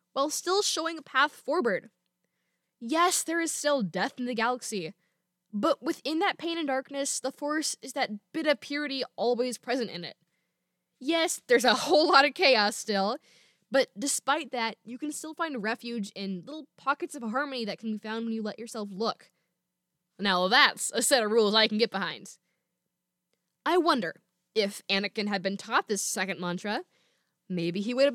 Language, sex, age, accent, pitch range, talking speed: English, female, 10-29, American, 195-300 Hz, 180 wpm